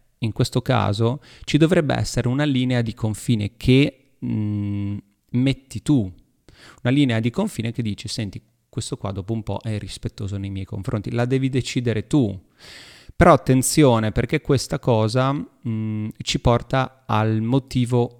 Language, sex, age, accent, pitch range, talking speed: Italian, male, 30-49, native, 105-125 Hz, 150 wpm